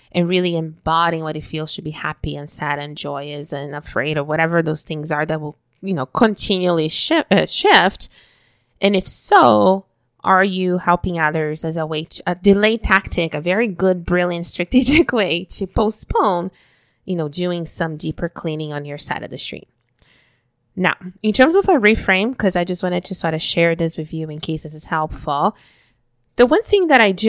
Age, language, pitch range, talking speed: 20-39, English, 155-200 Hz, 200 wpm